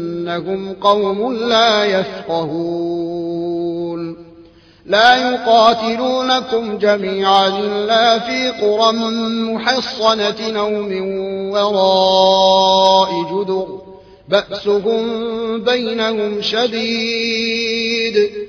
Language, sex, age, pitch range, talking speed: Arabic, male, 30-49, 190-235 Hz, 60 wpm